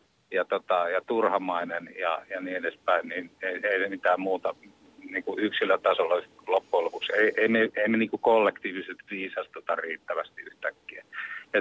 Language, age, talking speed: Finnish, 50-69, 125 wpm